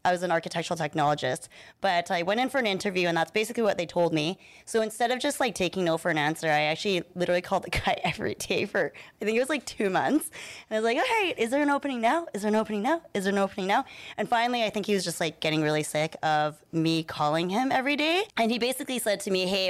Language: English